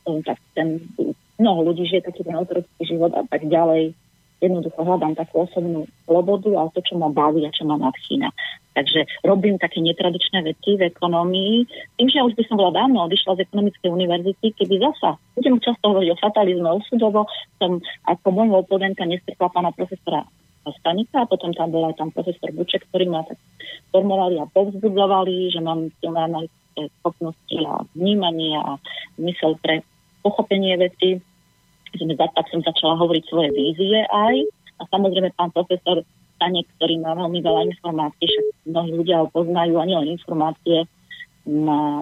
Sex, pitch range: female, 160-190 Hz